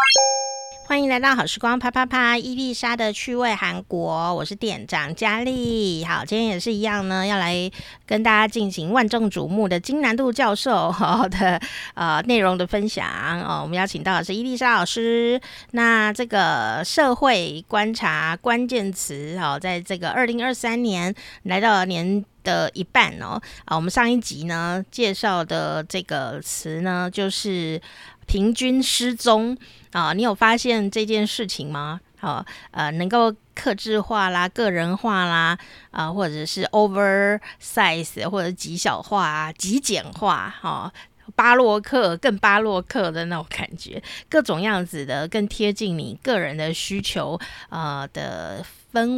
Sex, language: female, Chinese